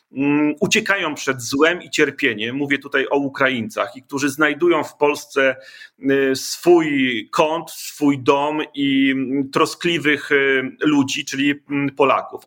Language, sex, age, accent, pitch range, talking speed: Polish, male, 40-59, native, 145-185 Hz, 110 wpm